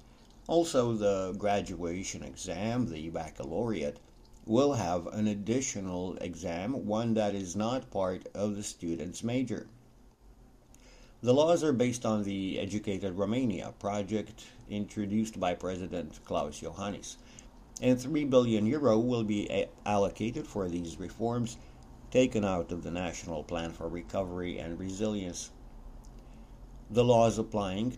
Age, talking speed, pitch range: 60-79, 120 wpm, 90-120 Hz